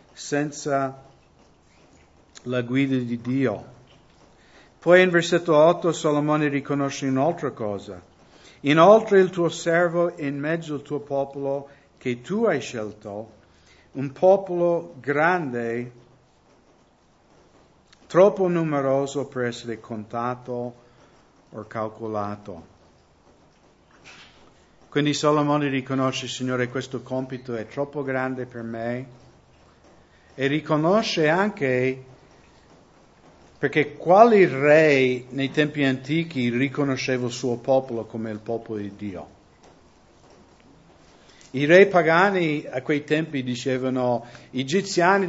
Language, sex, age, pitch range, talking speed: English, male, 50-69, 125-155 Hz, 100 wpm